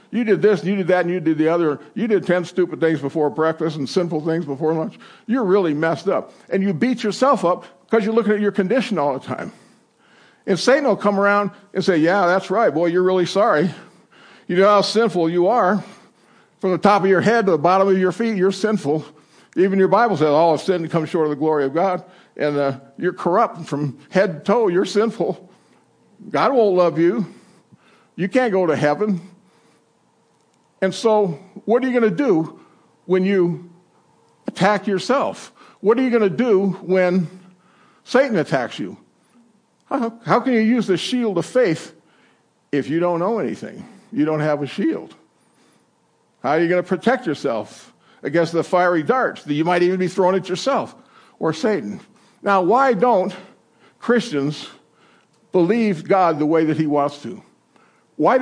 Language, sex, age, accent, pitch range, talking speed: English, male, 60-79, American, 165-210 Hz, 185 wpm